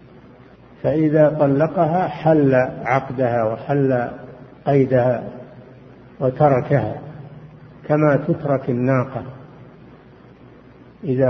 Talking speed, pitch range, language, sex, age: 60 wpm, 130-150 Hz, Arabic, male, 50-69